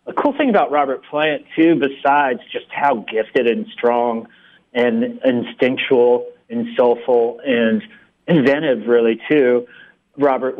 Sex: male